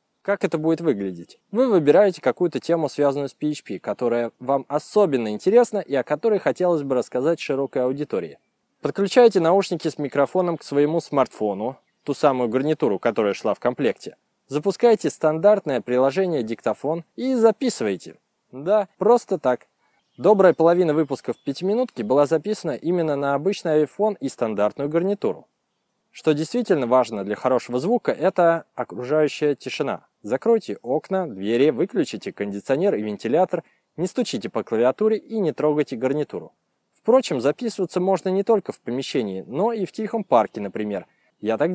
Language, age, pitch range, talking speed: Russian, 20-39, 130-195 Hz, 145 wpm